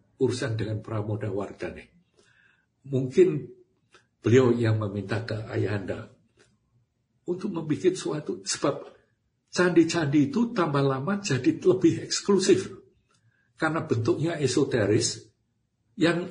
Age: 60-79